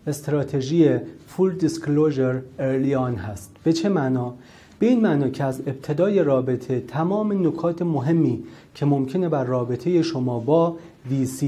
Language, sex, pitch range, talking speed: Persian, male, 125-160 Hz, 130 wpm